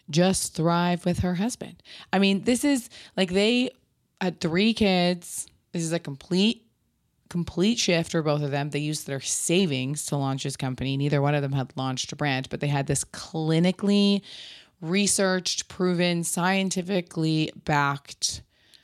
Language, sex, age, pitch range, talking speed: English, female, 20-39, 145-180 Hz, 155 wpm